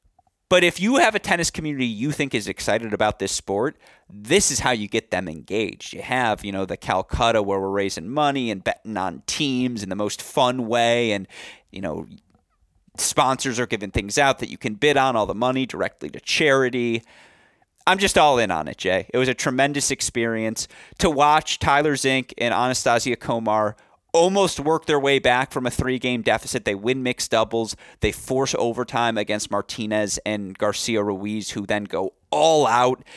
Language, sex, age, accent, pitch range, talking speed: English, male, 30-49, American, 105-135 Hz, 190 wpm